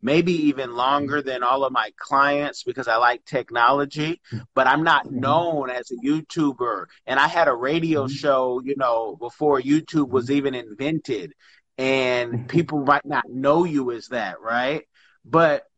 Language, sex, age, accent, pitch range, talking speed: English, male, 30-49, American, 135-165 Hz, 160 wpm